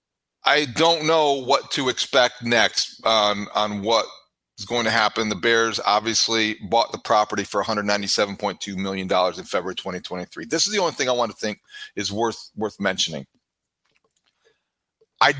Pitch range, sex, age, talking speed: 105-140 Hz, male, 40-59, 155 wpm